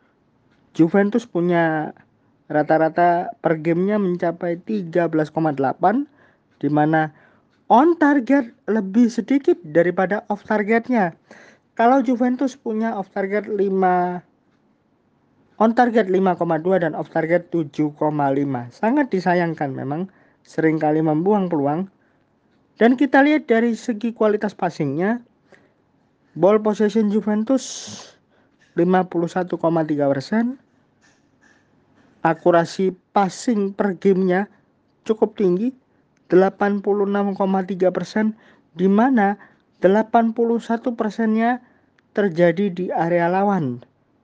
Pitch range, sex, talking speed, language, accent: 165-215 Hz, male, 85 wpm, Indonesian, native